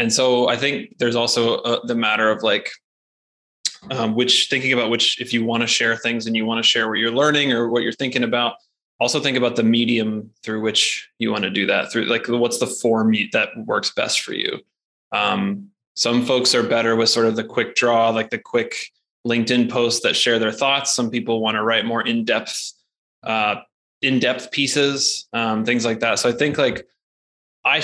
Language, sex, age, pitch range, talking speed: English, male, 20-39, 115-125 Hz, 205 wpm